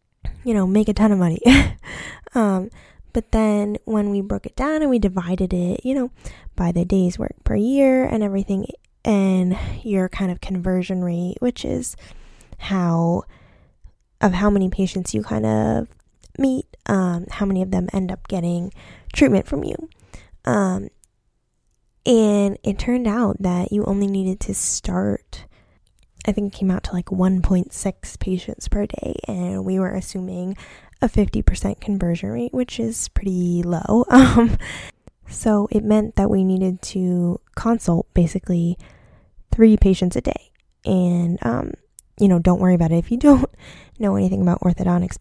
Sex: female